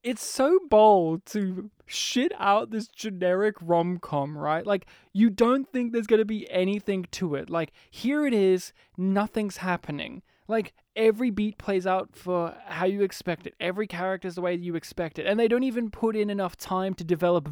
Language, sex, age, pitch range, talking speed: English, male, 20-39, 175-230 Hz, 190 wpm